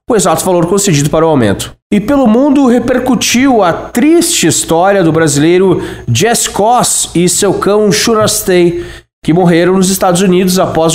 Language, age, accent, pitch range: Portuguese, 20-39, Brazilian, 150-210 Hz